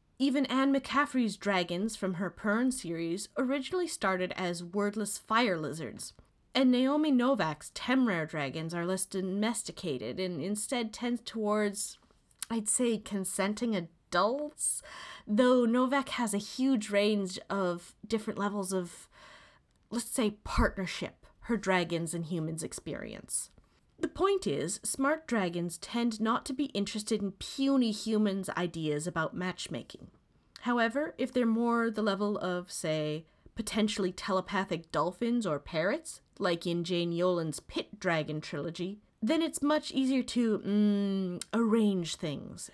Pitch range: 180-245 Hz